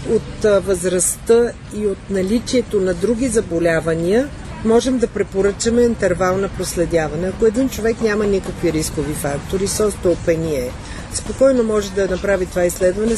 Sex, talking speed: female, 130 wpm